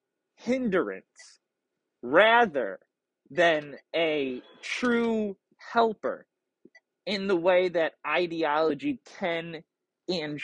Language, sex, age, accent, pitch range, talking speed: English, male, 20-39, American, 165-240 Hz, 75 wpm